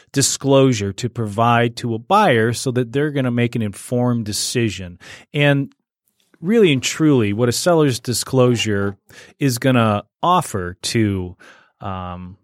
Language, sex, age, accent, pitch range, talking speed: English, male, 30-49, American, 105-135 Hz, 140 wpm